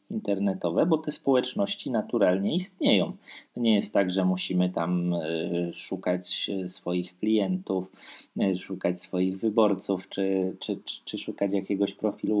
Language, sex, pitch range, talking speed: Polish, male, 90-110 Hz, 115 wpm